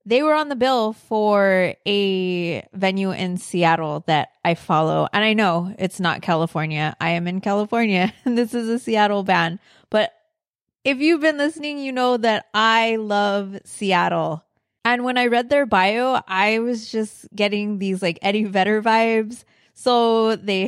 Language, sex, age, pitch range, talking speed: English, female, 20-39, 180-225 Hz, 165 wpm